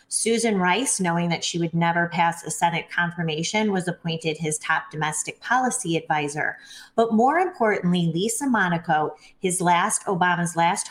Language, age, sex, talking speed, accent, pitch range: English, 30-49, female, 150 wpm, American, 165-220 Hz